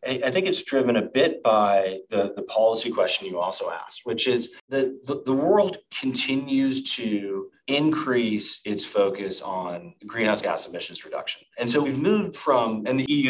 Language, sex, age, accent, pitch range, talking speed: English, male, 30-49, American, 110-150 Hz, 170 wpm